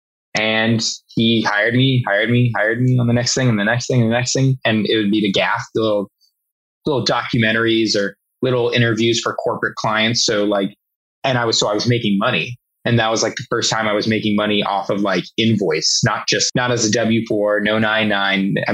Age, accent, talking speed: 20-39, American, 220 wpm